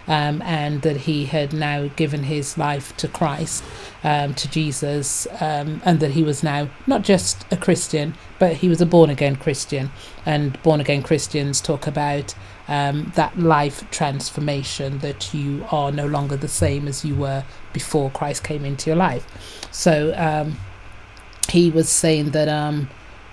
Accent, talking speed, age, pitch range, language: British, 165 wpm, 30-49, 145-170 Hz, English